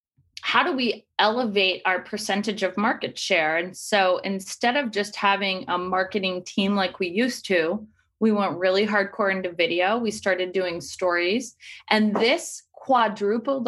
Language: English